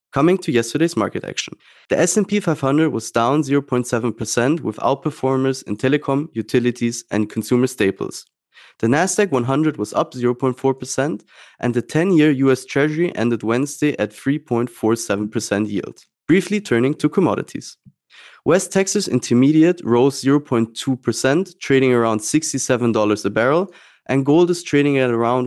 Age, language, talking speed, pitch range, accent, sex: 20-39, English, 130 wpm, 115-150 Hz, German, male